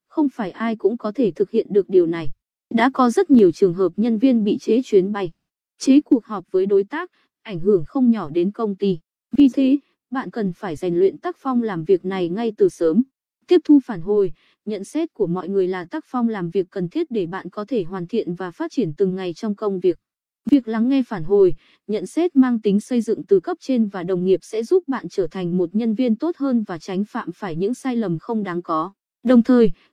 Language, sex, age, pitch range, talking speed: Vietnamese, female, 20-39, 190-265 Hz, 240 wpm